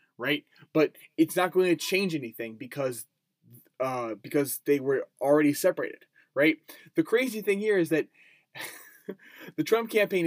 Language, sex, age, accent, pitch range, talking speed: English, male, 20-39, American, 145-185 Hz, 145 wpm